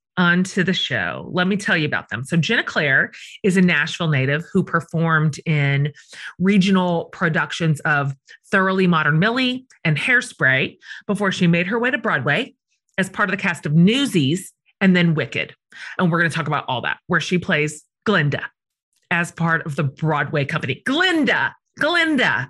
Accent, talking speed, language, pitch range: American, 170 wpm, English, 165-240 Hz